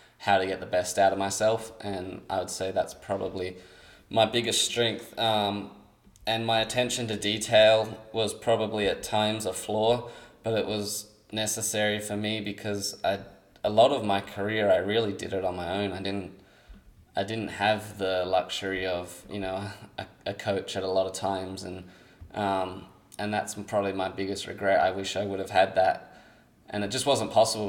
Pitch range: 95-105 Hz